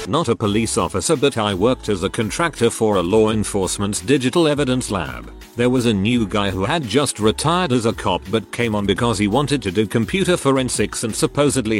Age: 40-59